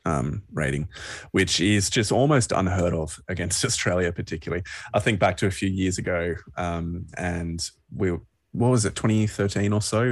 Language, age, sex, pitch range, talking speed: English, 20-39, male, 85-110 Hz, 180 wpm